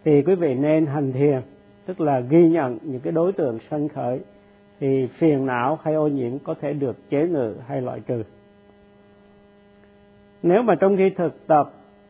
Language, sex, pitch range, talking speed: Vietnamese, male, 100-165 Hz, 180 wpm